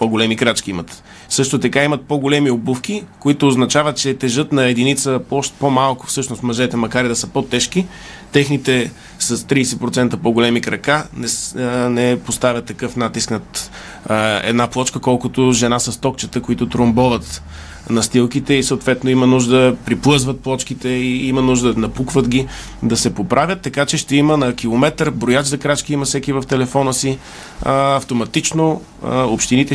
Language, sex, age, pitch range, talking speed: Bulgarian, male, 20-39, 115-135 Hz, 150 wpm